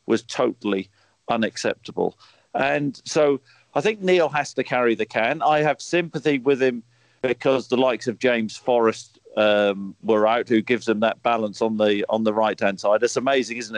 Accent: British